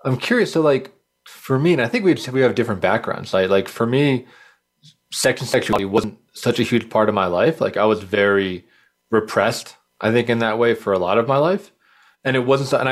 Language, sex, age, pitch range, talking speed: English, male, 30-49, 100-130 Hz, 235 wpm